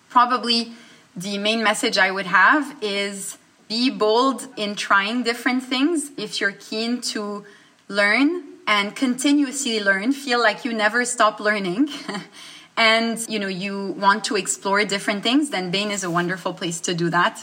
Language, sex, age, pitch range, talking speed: English, female, 30-49, 195-235 Hz, 160 wpm